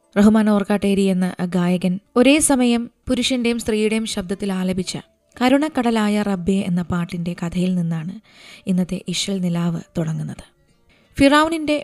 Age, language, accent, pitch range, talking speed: 20-39, Malayalam, native, 190-230 Hz, 105 wpm